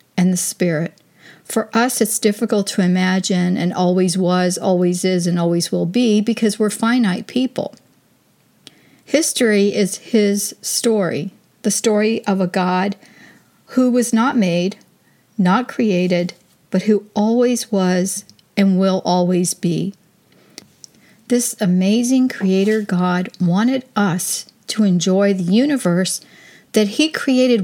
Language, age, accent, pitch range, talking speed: English, 50-69, American, 185-230 Hz, 125 wpm